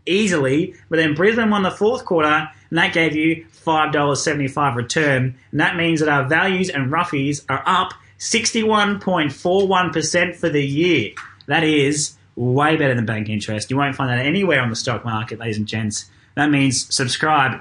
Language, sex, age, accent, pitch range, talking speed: English, male, 20-39, Australian, 115-150 Hz, 170 wpm